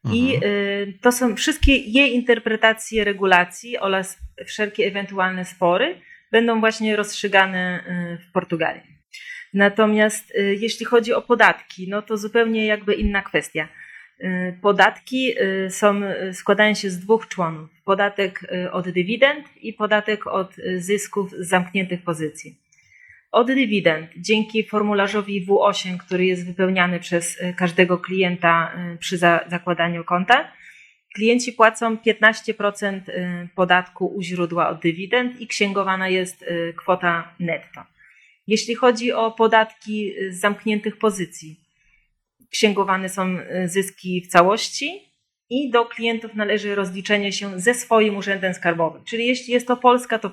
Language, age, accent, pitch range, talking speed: Polish, 30-49, native, 180-220 Hz, 115 wpm